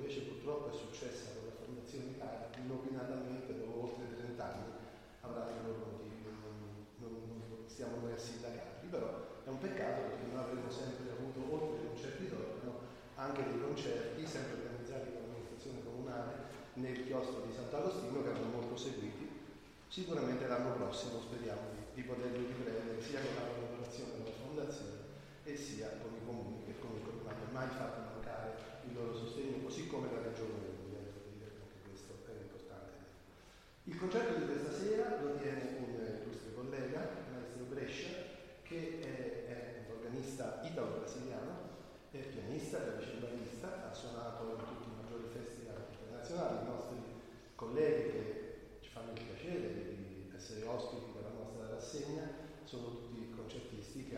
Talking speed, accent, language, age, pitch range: 160 wpm, Italian, English, 30-49, 115-130 Hz